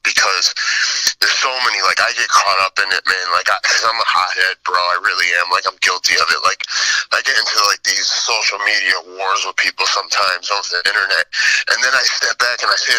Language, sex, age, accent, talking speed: English, male, 30-49, American, 220 wpm